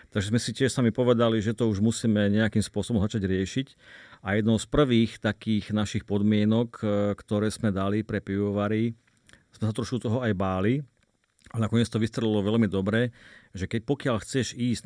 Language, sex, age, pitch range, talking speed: Slovak, male, 40-59, 100-115 Hz, 175 wpm